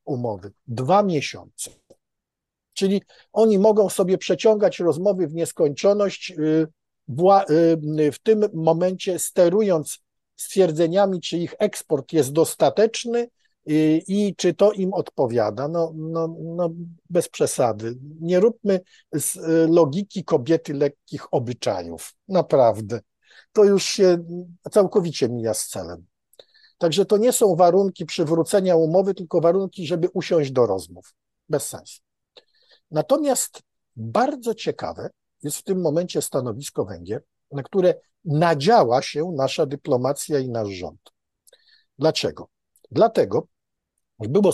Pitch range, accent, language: 140-190 Hz, native, Polish